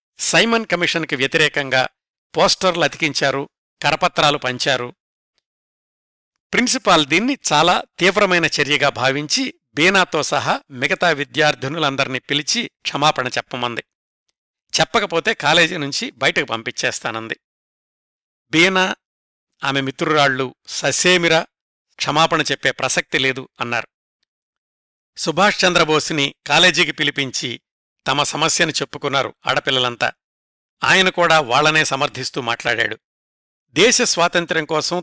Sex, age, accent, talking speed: male, 60-79, native, 85 wpm